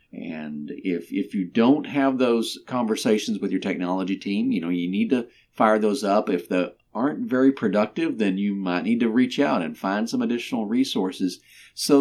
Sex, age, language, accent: male, 50-69, English, American